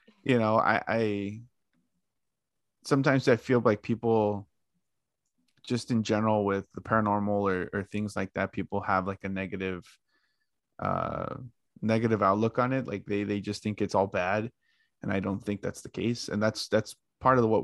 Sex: male